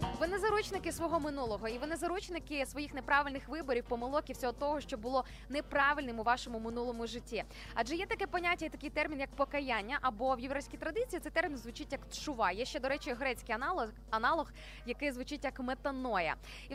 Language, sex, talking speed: Ukrainian, female, 185 wpm